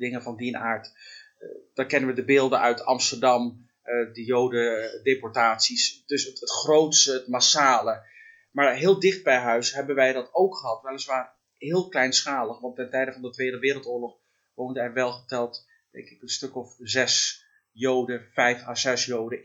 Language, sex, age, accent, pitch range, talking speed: Dutch, male, 30-49, Dutch, 120-145 Hz, 175 wpm